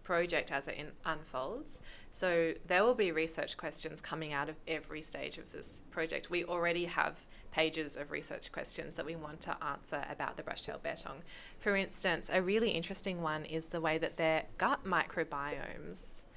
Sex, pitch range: female, 165-210 Hz